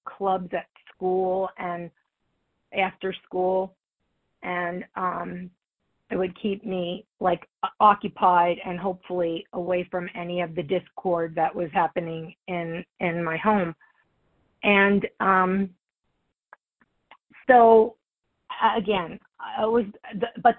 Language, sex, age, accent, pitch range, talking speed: English, female, 40-59, American, 180-205 Hz, 105 wpm